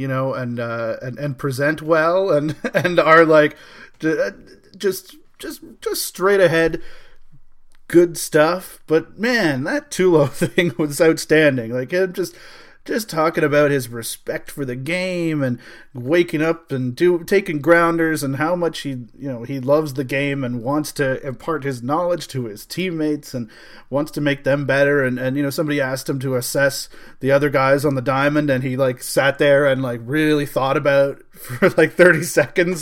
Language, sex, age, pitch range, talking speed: English, male, 30-49, 135-175 Hz, 180 wpm